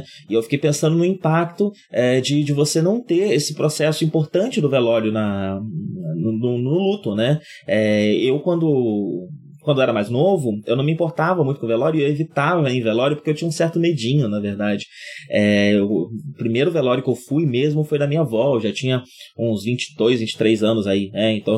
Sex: male